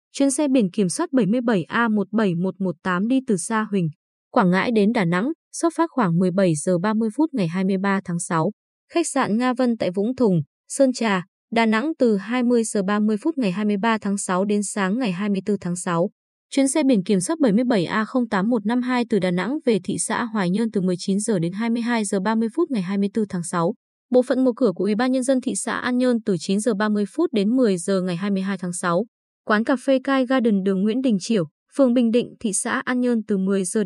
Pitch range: 195-245 Hz